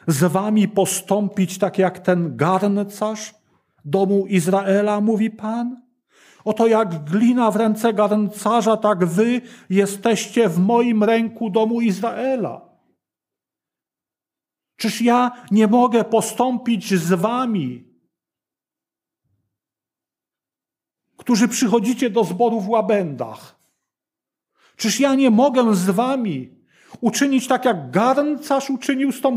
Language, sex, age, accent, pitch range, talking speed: Polish, male, 40-59, native, 190-240 Hz, 105 wpm